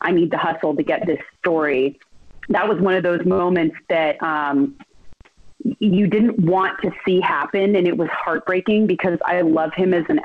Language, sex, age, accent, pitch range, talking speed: English, female, 30-49, American, 160-200 Hz, 185 wpm